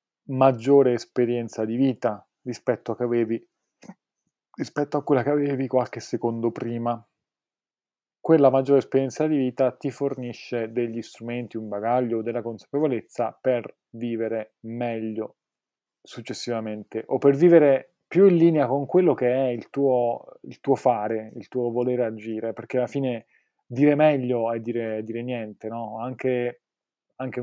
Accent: native